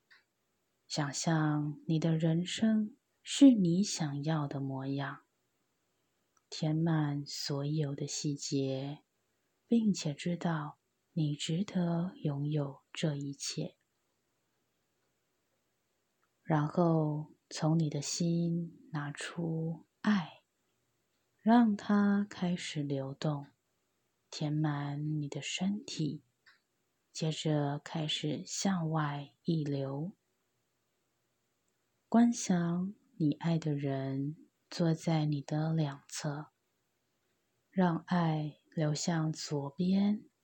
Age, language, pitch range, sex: 20-39, Chinese, 145-175 Hz, female